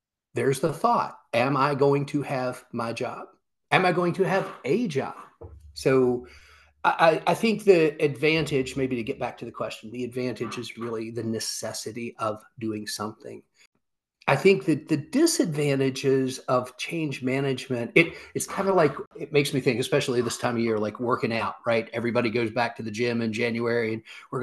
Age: 40-59